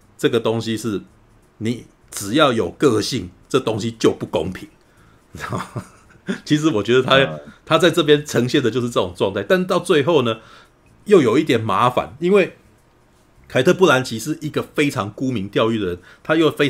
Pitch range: 95-145 Hz